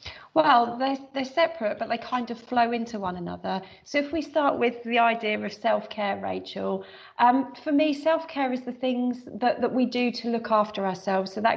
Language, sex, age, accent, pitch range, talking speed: English, female, 40-59, British, 220-275 Hz, 215 wpm